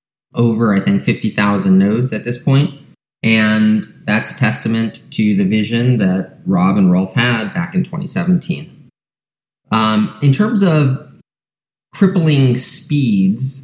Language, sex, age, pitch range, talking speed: English, male, 20-39, 115-155 Hz, 130 wpm